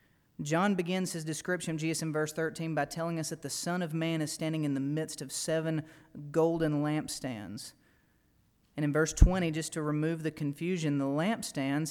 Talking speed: 185 wpm